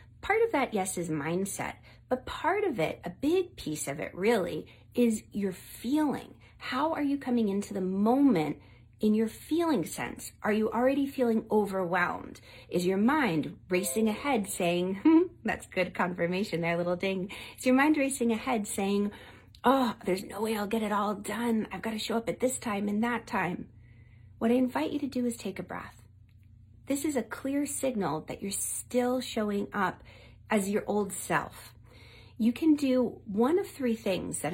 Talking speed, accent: 185 wpm, American